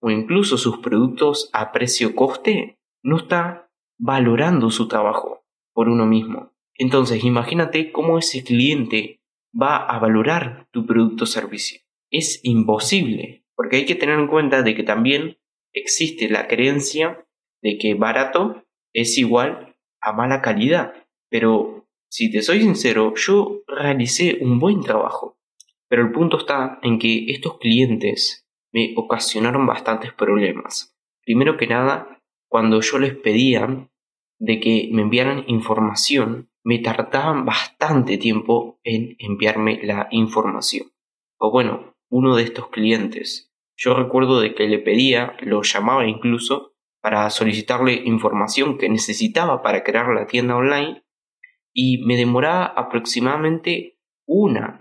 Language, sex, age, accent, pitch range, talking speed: Spanish, male, 20-39, Argentinian, 115-150 Hz, 130 wpm